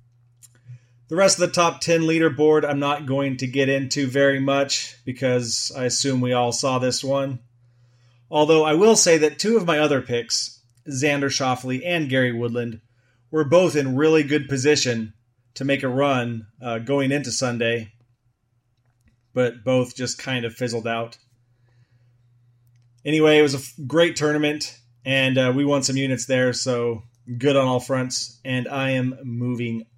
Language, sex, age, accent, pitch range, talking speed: English, male, 30-49, American, 120-145 Hz, 160 wpm